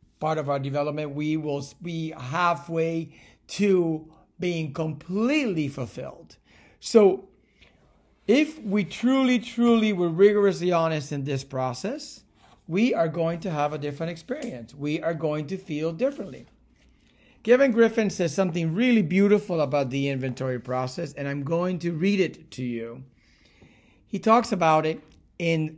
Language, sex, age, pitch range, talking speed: English, male, 50-69, 145-200 Hz, 140 wpm